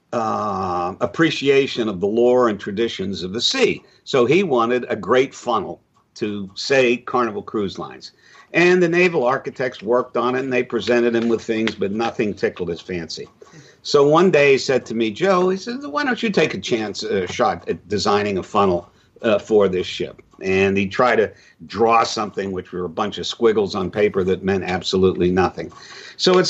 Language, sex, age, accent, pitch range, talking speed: English, male, 50-69, American, 105-140 Hz, 190 wpm